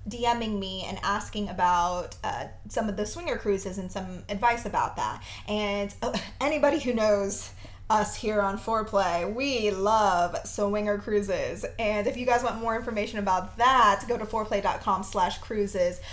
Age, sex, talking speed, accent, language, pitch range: 20-39, female, 150 wpm, American, English, 195-265 Hz